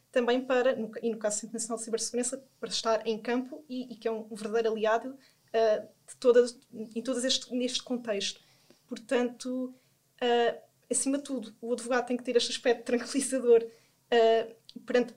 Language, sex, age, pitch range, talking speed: Portuguese, female, 20-39, 225-255 Hz, 165 wpm